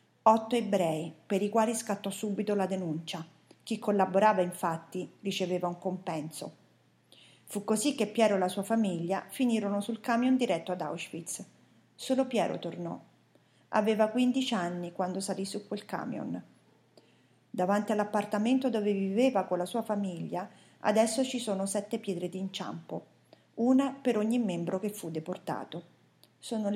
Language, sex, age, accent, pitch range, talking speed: Italian, female, 40-59, native, 190-230 Hz, 140 wpm